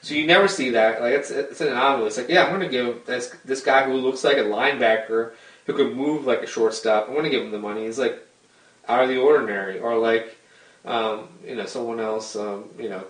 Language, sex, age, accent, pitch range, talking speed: English, male, 20-39, American, 110-135 Hz, 240 wpm